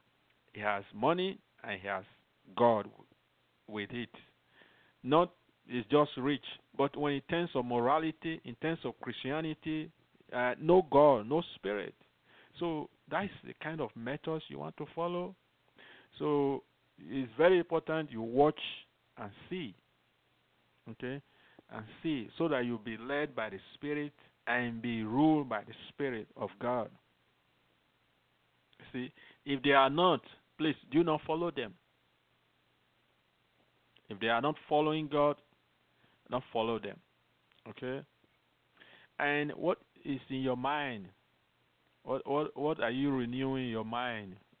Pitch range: 115-150 Hz